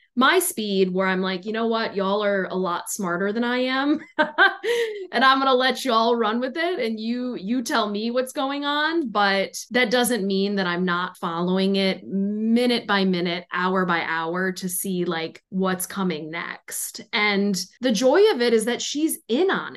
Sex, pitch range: female, 185-245 Hz